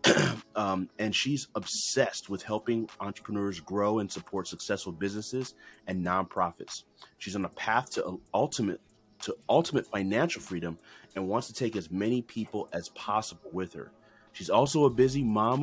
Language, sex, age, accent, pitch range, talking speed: English, male, 30-49, American, 95-125 Hz, 155 wpm